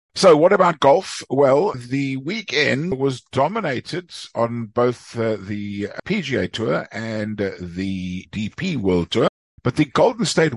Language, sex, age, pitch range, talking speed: English, male, 50-69, 95-135 Hz, 140 wpm